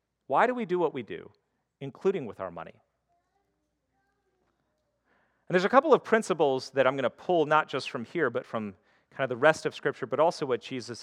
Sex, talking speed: male, 205 wpm